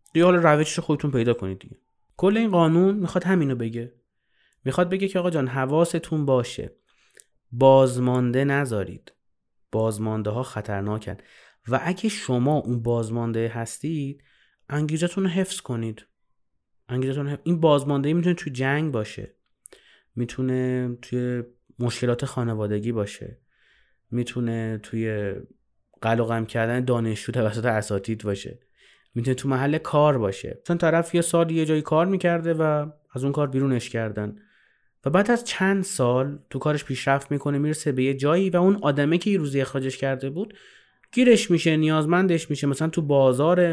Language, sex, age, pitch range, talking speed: Persian, male, 30-49, 120-155 Hz, 140 wpm